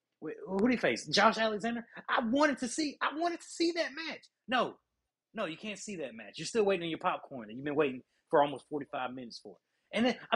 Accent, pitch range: American, 150-230 Hz